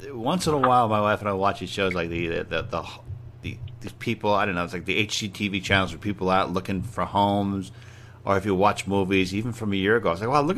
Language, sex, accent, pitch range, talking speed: English, male, American, 100-120 Hz, 265 wpm